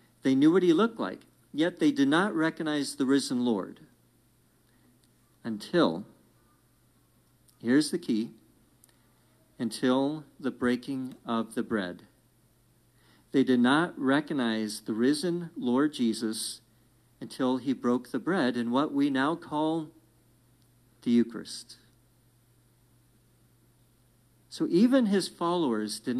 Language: English